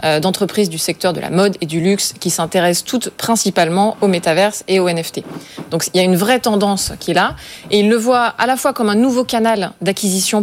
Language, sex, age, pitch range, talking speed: French, female, 20-39, 175-225 Hz, 230 wpm